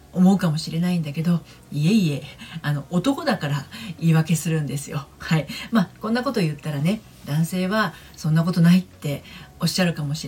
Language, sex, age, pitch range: Japanese, female, 40-59, 150-205 Hz